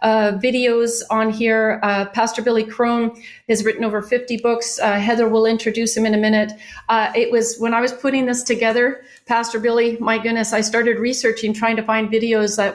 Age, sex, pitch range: 40-59, female, 215-245 Hz